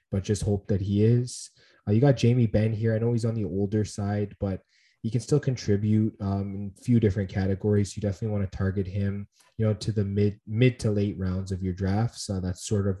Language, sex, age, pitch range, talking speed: English, male, 20-39, 100-110 Hz, 240 wpm